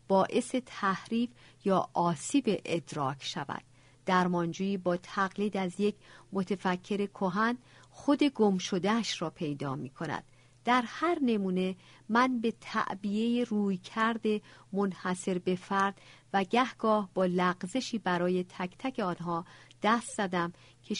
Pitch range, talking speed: 170-220 Hz, 115 wpm